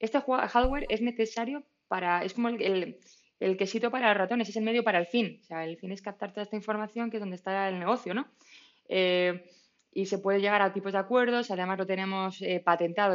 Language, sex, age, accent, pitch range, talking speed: Spanish, female, 20-39, Spanish, 180-225 Hz, 225 wpm